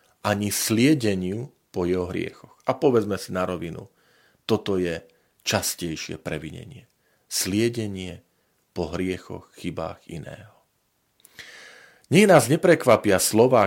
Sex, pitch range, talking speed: male, 95-140 Hz, 100 wpm